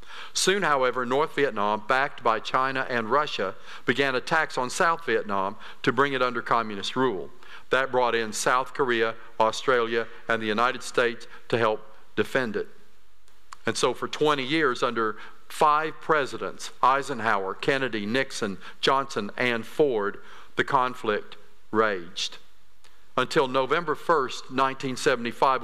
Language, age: English, 50-69